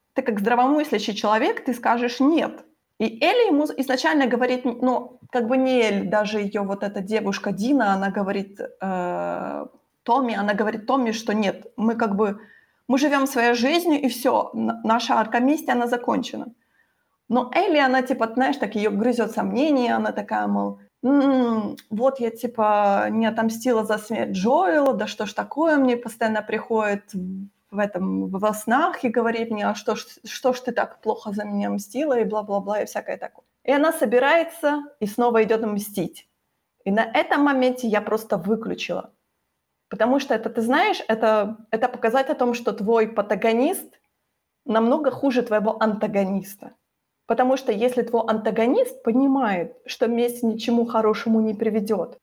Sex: female